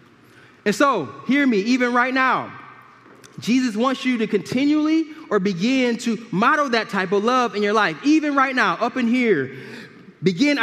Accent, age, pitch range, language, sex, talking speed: American, 20-39, 225-275 Hz, English, male, 170 wpm